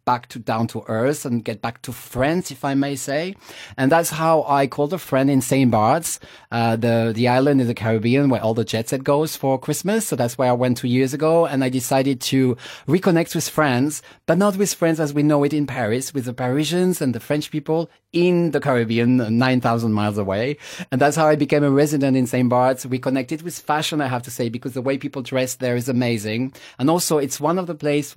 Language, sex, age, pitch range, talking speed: English, male, 30-49, 120-155 Hz, 235 wpm